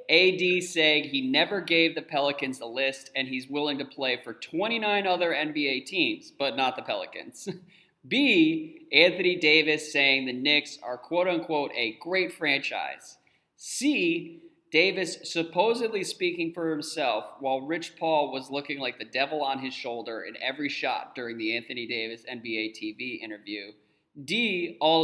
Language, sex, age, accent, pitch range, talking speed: English, male, 30-49, American, 120-180 Hz, 150 wpm